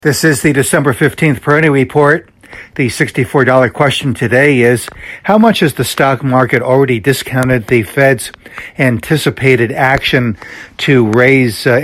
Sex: male